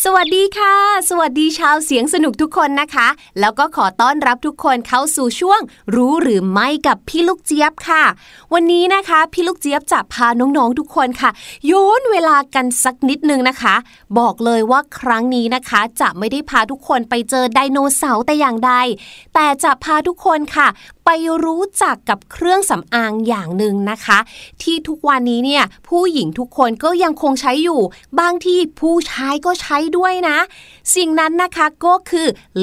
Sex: female